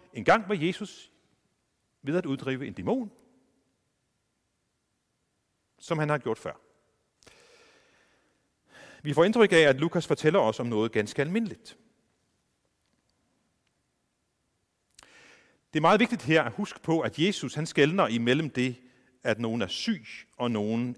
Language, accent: Danish, native